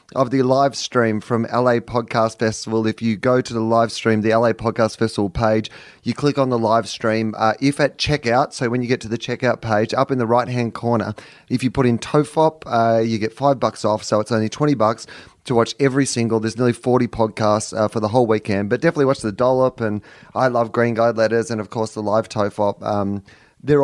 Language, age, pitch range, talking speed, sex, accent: English, 30-49, 110-135 Hz, 225 wpm, male, Australian